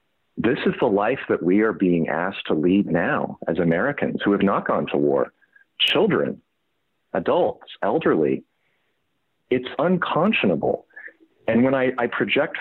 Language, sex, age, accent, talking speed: English, male, 40-59, American, 145 wpm